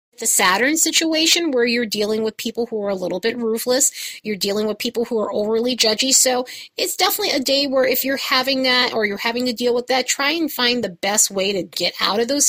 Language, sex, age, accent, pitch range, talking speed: English, female, 30-49, American, 205-265 Hz, 240 wpm